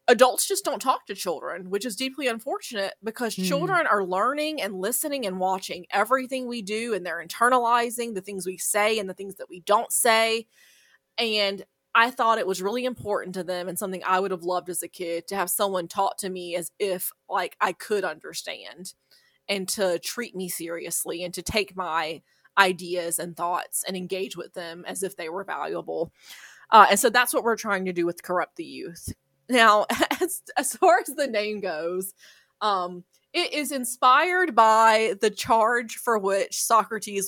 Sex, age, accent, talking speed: female, 20-39, American, 190 wpm